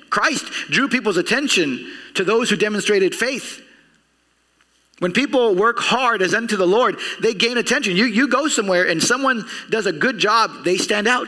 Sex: male